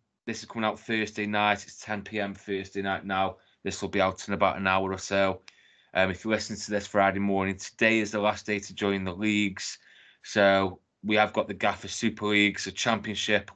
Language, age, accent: English, 20-39, British